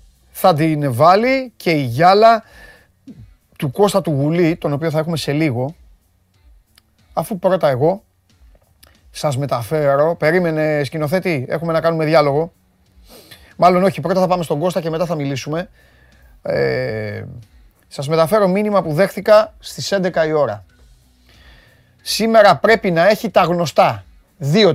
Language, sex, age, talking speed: Greek, male, 30-49, 120 wpm